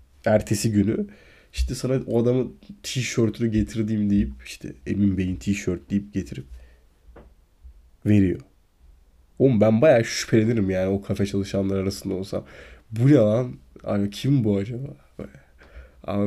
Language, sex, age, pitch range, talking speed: Turkish, male, 20-39, 95-115 Hz, 125 wpm